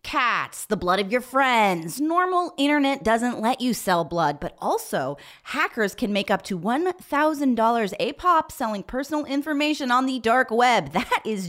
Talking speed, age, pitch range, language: 180 wpm, 30-49, 195-295 Hz, English